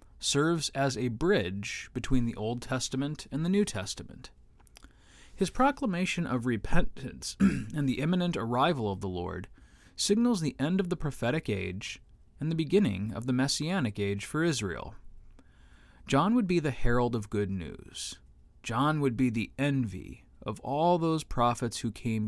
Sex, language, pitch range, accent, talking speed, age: male, English, 105-160 Hz, American, 155 wpm, 20-39